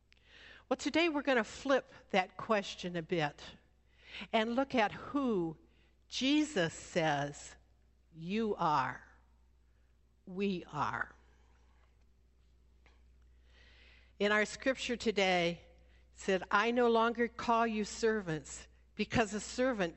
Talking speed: 105 wpm